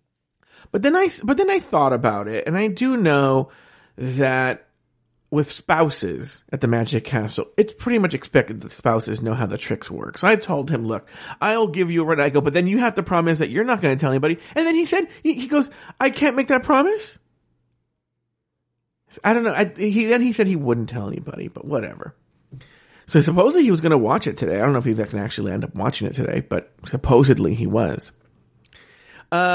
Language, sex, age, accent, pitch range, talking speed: English, male, 40-59, American, 135-200 Hz, 215 wpm